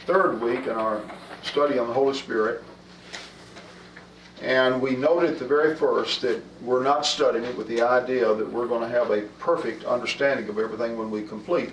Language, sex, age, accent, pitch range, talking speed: English, male, 50-69, American, 115-140 Hz, 185 wpm